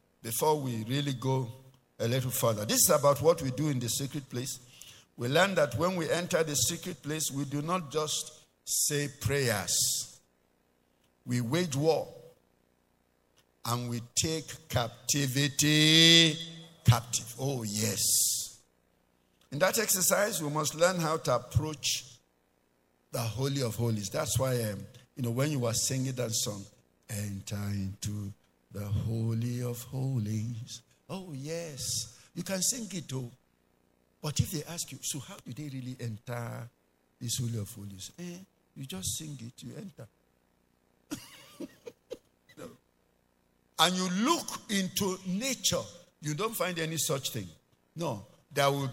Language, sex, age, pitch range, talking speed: English, male, 50-69, 110-155 Hz, 140 wpm